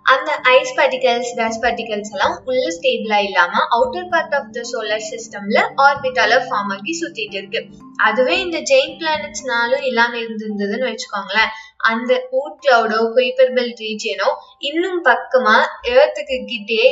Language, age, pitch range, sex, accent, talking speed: Tamil, 20-39, 230-290 Hz, female, native, 120 wpm